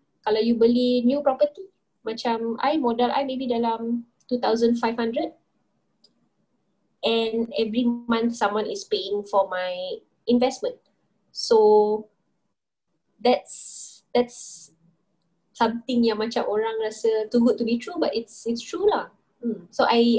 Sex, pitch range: female, 210-260 Hz